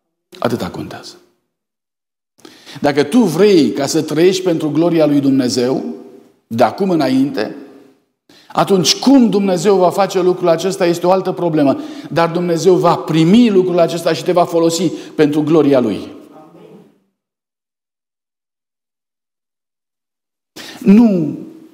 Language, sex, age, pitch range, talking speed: Romanian, male, 50-69, 145-200 Hz, 110 wpm